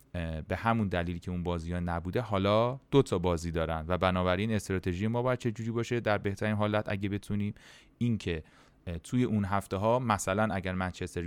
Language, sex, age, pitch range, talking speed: Persian, male, 30-49, 85-110 Hz, 175 wpm